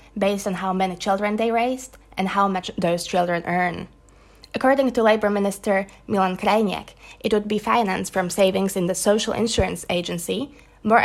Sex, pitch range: female, 185-215 Hz